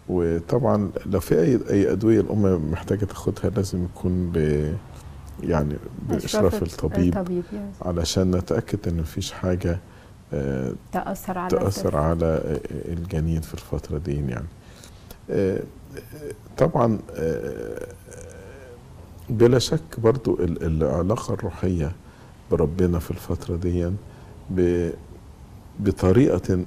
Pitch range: 85-100 Hz